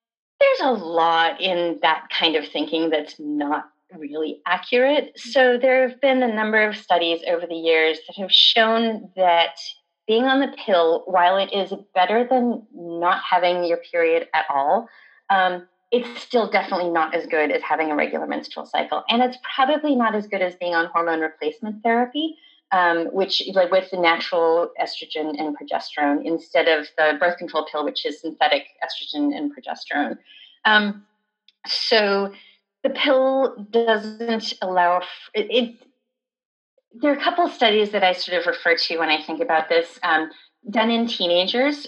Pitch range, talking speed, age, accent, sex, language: 170-235 Hz, 170 wpm, 30-49, American, female, English